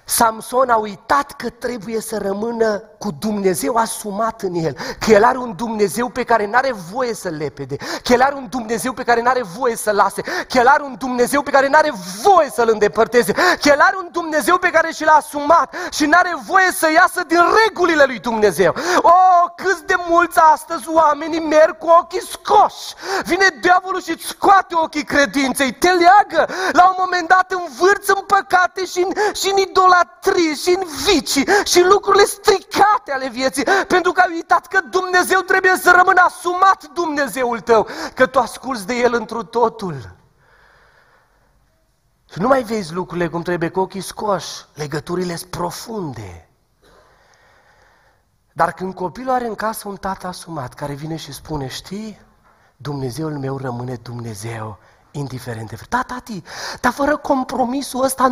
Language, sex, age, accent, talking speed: Romanian, male, 30-49, native, 165 wpm